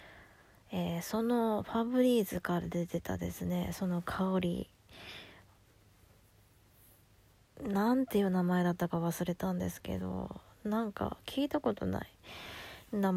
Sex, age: female, 20-39